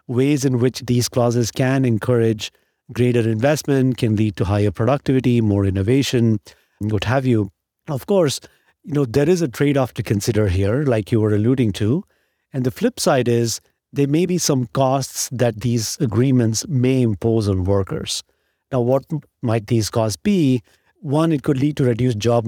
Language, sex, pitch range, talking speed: English, male, 110-135 Hz, 175 wpm